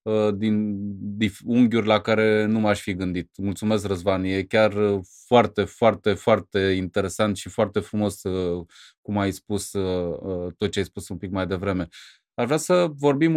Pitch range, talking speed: 100-125 Hz, 155 wpm